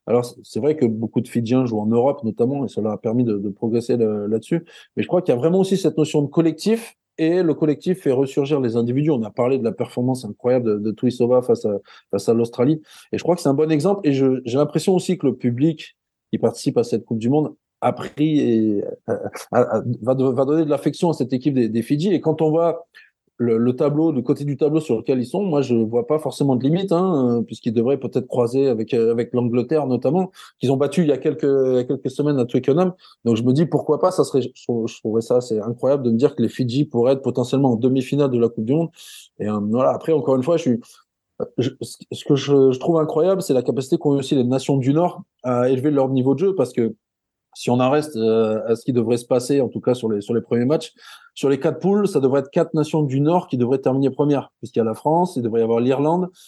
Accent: French